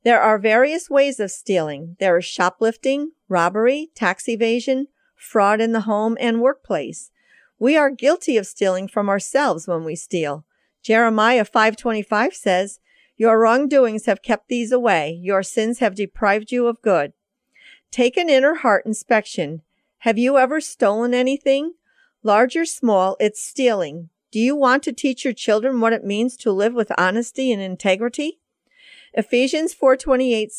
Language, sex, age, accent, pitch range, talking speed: English, female, 50-69, American, 205-265 Hz, 150 wpm